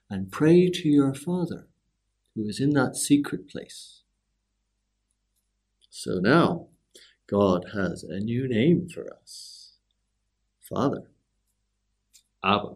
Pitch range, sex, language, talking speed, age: 100-160 Hz, male, English, 105 wpm, 60-79